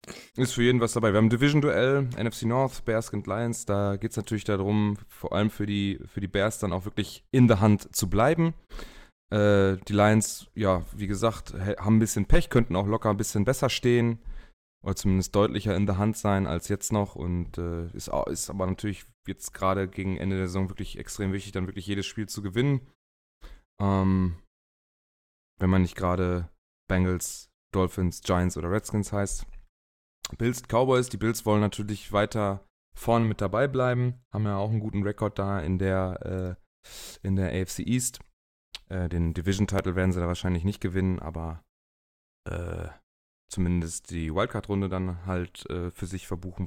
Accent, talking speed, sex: German, 175 wpm, male